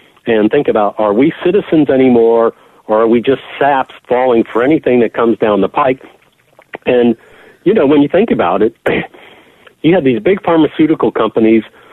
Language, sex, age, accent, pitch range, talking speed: English, male, 60-79, American, 120-170 Hz, 170 wpm